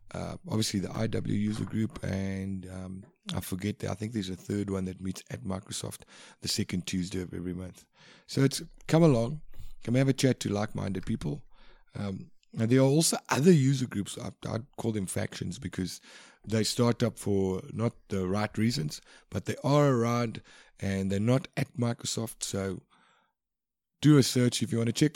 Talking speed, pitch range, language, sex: 190 wpm, 95-120 Hz, English, male